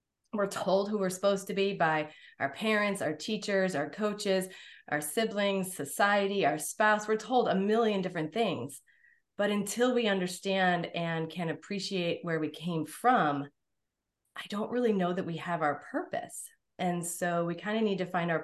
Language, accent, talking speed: English, American, 175 wpm